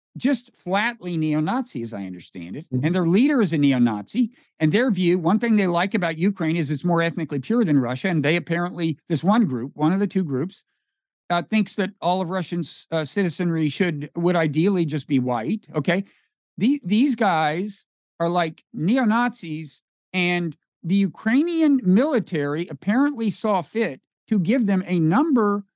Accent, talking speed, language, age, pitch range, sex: American, 170 wpm, English, 50-69, 155-225 Hz, male